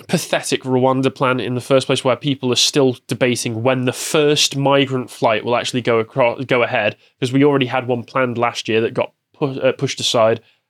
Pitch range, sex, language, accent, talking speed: 120-155 Hz, male, English, British, 210 wpm